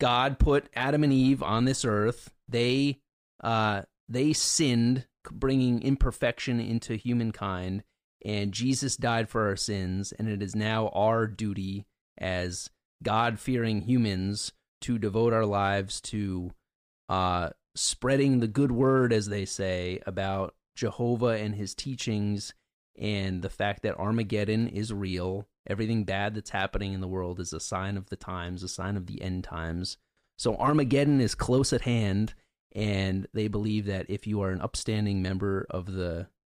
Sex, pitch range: male, 95-120 Hz